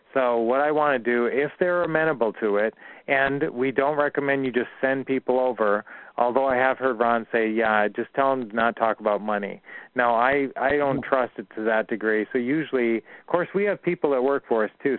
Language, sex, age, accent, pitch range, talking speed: English, male, 40-59, American, 115-140 Hz, 225 wpm